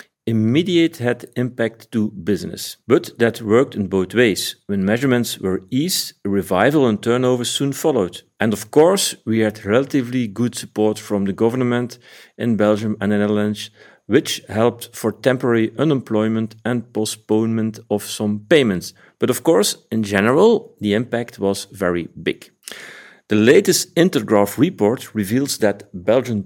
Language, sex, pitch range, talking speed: English, male, 105-125 Hz, 145 wpm